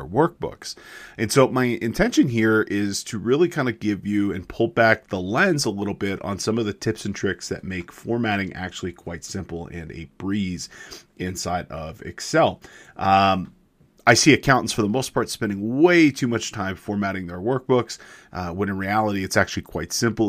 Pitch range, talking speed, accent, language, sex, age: 95-115 Hz, 190 wpm, American, English, male, 30-49